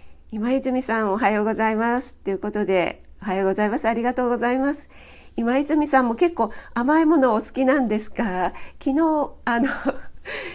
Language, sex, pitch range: Japanese, female, 195-270 Hz